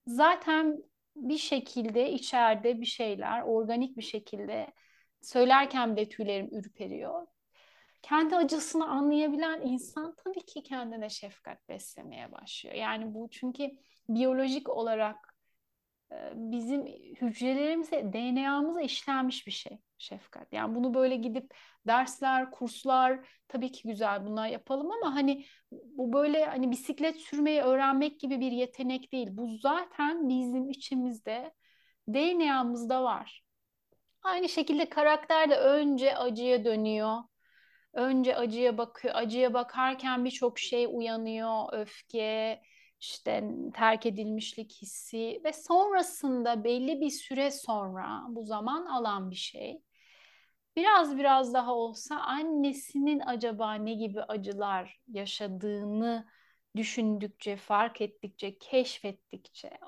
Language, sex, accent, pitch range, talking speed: Turkish, female, native, 225-285 Hz, 110 wpm